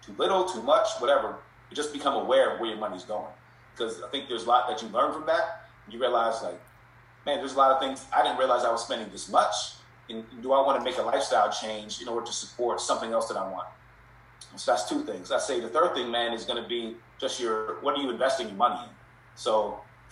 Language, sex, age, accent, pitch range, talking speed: English, male, 30-49, American, 110-130 Hz, 250 wpm